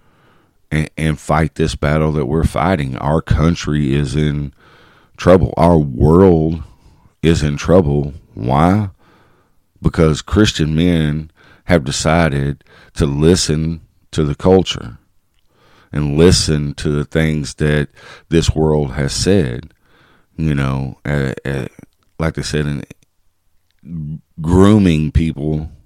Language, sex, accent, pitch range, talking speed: English, male, American, 75-85 Hz, 110 wpm